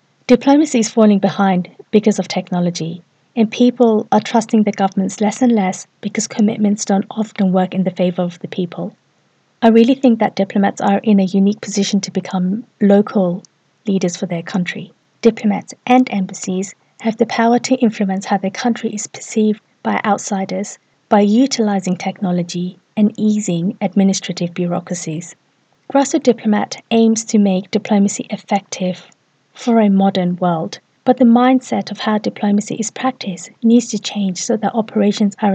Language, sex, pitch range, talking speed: English, female, 185-225 Hz, 155 wpm